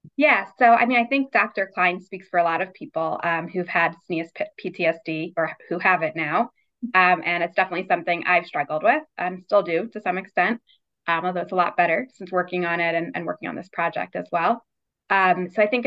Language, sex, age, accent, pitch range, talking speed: English, female, 20-39, American, 180-235 Hz, 225 wpm